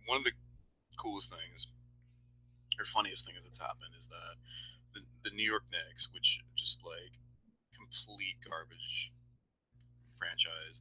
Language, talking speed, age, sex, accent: English, 130 wpm, 30-49, male, American